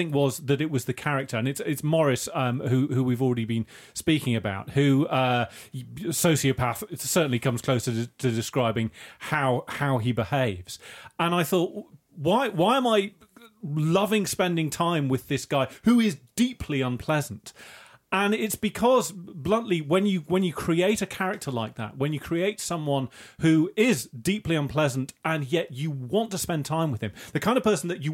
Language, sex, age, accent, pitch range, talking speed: English, male, 30-49, British, 125-175 Hz, 180 wpm